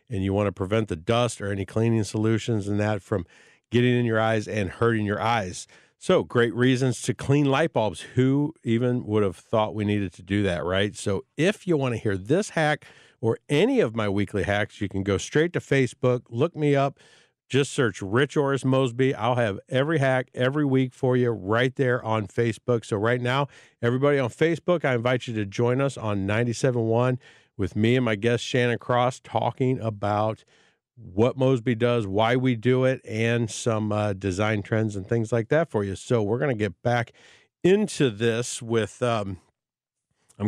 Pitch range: 105-130 Hz